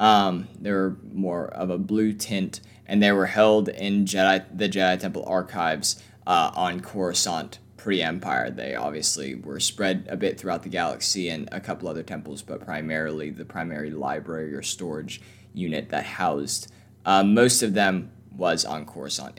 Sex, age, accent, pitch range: male, 20-39, American, 90-105 Hz